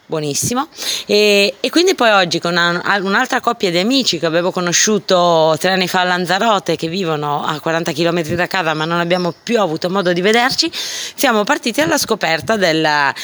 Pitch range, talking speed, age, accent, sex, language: 170-210 Hz, 180 wpm, 20-39, native, female, Italian